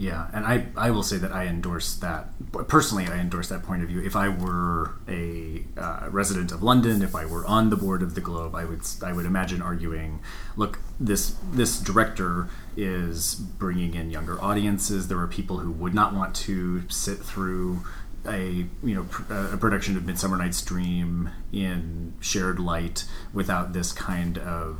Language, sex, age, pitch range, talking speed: English, male, 30-49, 90-100 Hz, 185 wpm